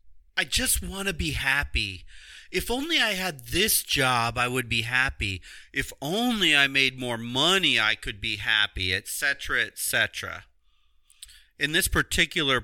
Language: English